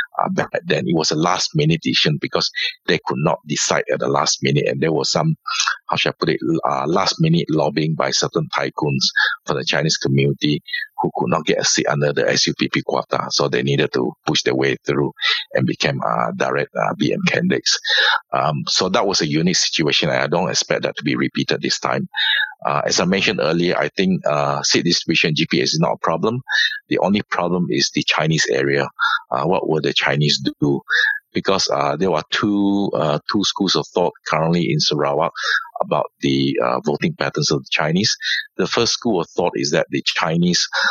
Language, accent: English, Malaysian